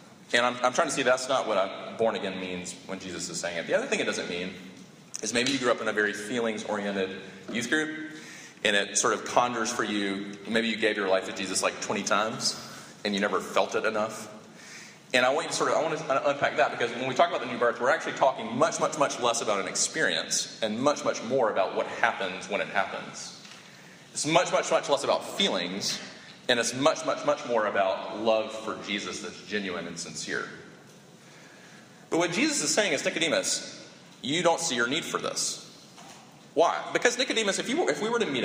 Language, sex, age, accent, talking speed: English, male, 30-49, American, 220 wpm